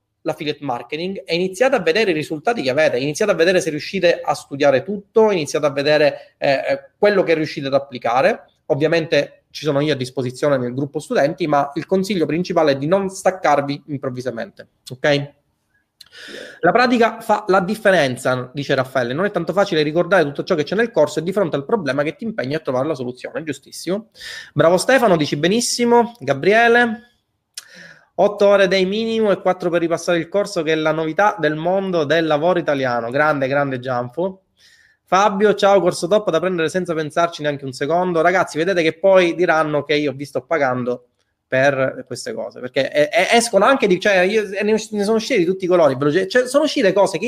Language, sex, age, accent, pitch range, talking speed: Italian, male, 30-49, native, 145-205 Hz, 185 wpm